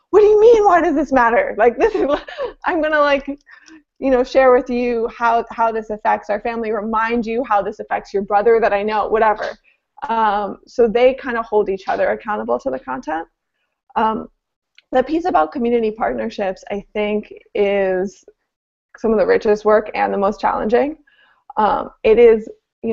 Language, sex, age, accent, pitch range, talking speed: English, female, 20-39, American, 205-255 Hz, 185 wpm